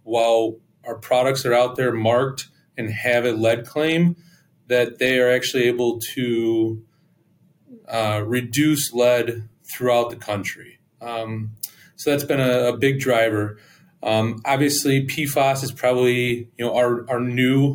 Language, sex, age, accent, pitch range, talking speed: English, male, 30-49, American, 115-135 Hz, 140 wpm